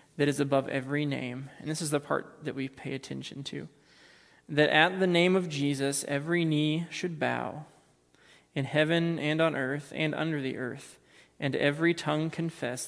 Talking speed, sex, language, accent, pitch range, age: 175 wpm, male, English, American, 135-155 Hz, 20-39